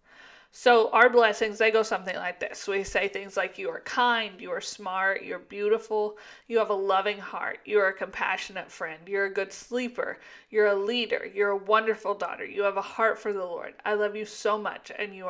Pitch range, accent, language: 210-265 Hz, American, English